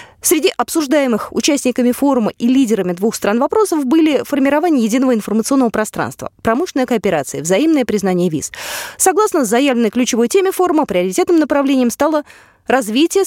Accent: native